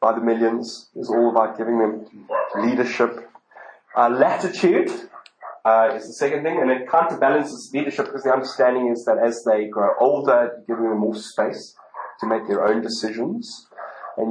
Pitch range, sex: 115-145 Hz, male